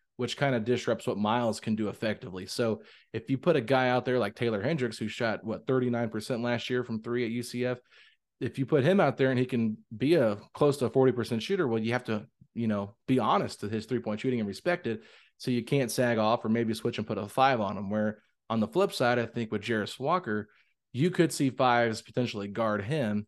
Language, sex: English, male